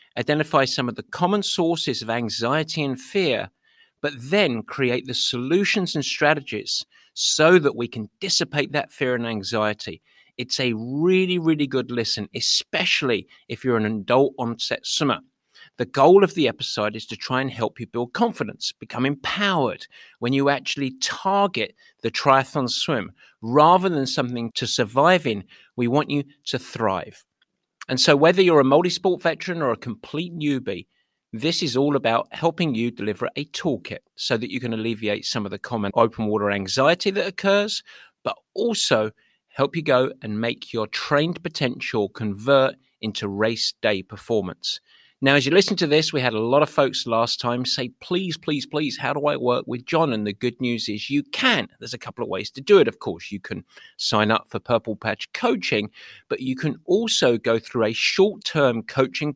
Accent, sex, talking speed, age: British, male, 180 wpm, 50-69